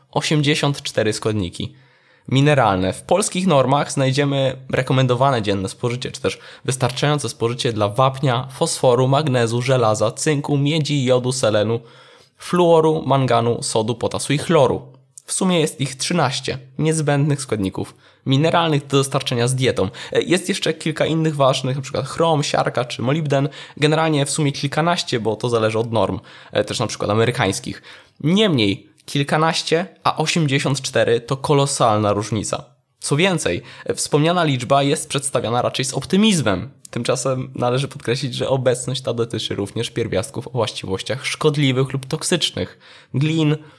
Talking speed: 130 wpm